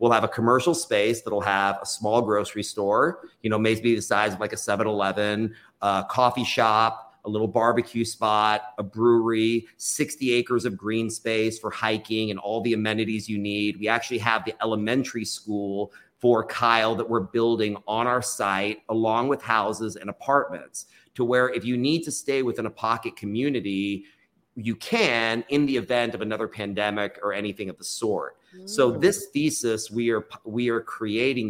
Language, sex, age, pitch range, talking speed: English, male, 30-49, 105-120 Hz, 180 wpm